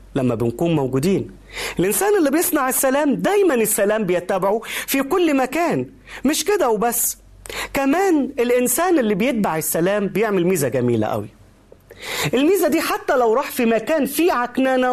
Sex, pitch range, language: male, 205-290 Hz, Arabic